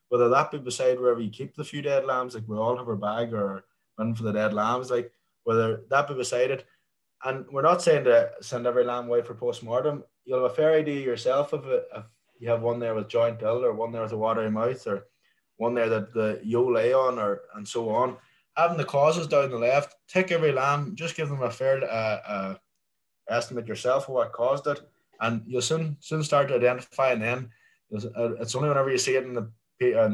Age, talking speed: 20-39, 230 wpm